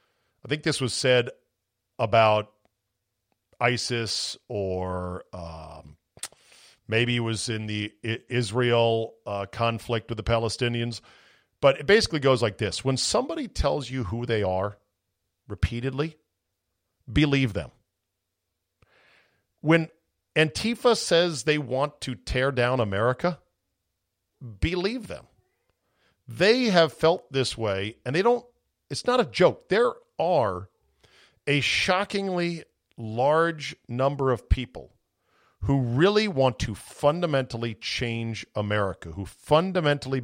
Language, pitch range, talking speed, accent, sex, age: English, 105-150 Hz, 115 wpm, American, male, 50-69